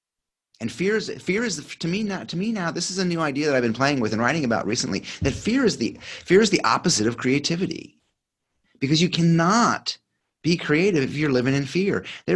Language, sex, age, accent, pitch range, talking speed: English, male, 30-49, American, 100-150 Hz, 225 wpm